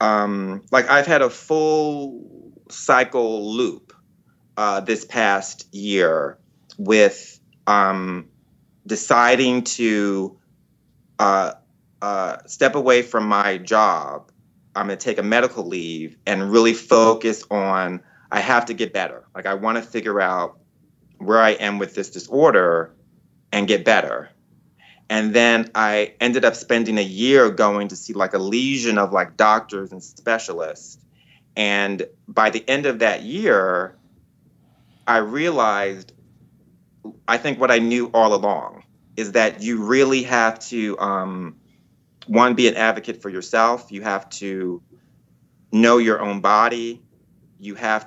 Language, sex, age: English, male, 30-49